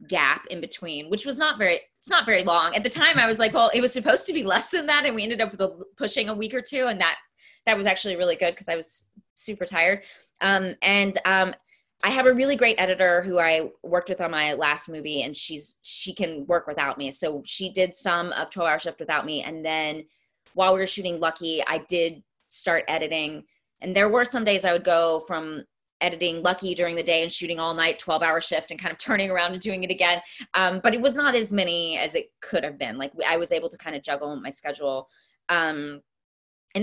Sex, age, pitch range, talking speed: female, 20-39, 160-215 Hz, 240 wpm